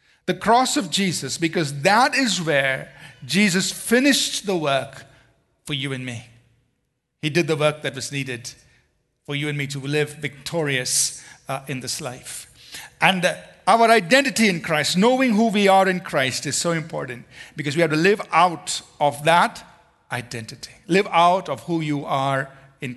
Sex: male